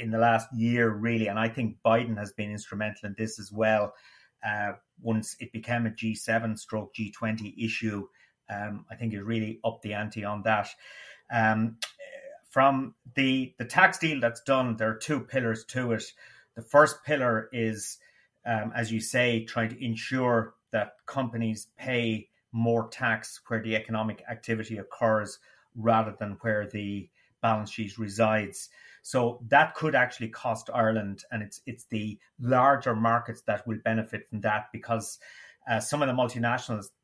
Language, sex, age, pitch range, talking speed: English, male, 30-49, 110-120 Hz, 160 wpm